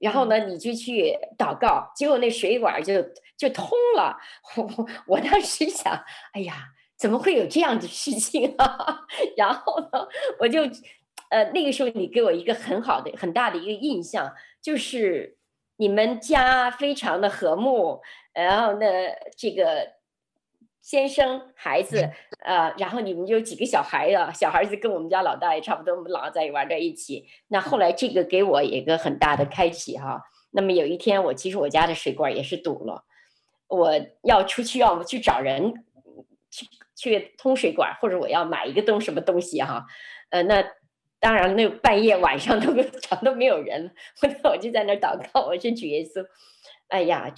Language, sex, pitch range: Chinese, female, 195-285 Hz